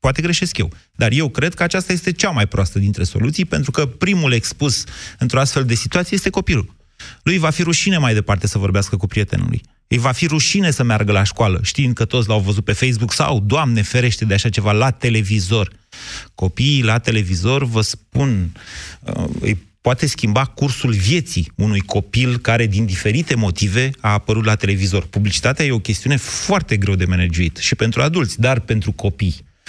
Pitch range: 105-150 Hz